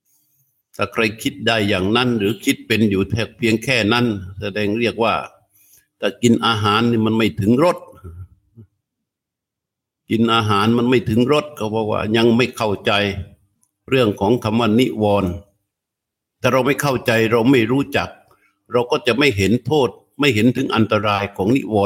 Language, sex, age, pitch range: Thai, male, 60-79, 100-125 Hz